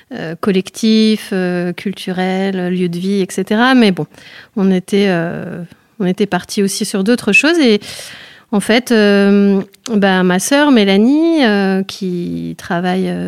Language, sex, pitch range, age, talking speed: French, female, 185-215 Hz, 30-49, 140 wpm